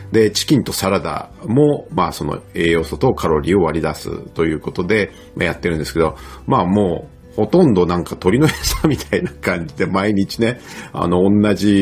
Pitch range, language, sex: 80-120 Hz, Japanese, male